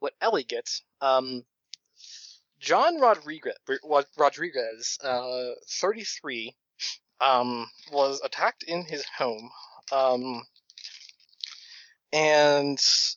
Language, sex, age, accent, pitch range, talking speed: English, male, 20-39, American, 125-155 Hz, 75 wpm